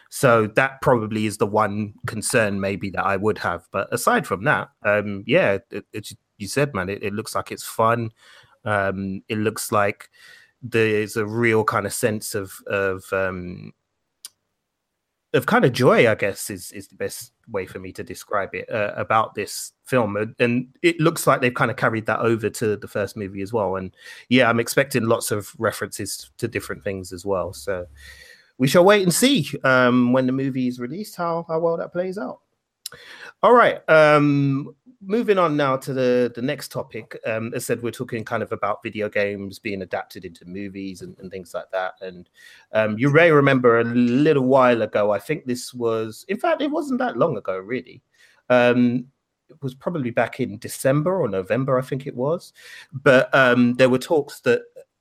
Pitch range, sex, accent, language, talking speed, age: 105-140 Hz, male, British, English, 195 wpm, 30-49